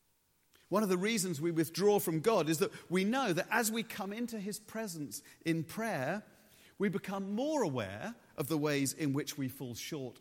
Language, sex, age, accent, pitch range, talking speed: English, male, 40-59, British, 120-175 Hz, 195 wpm